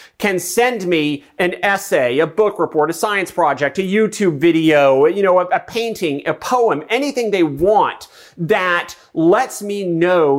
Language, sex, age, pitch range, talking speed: English, male, 40-59, 160-205 Hz, 160 wpm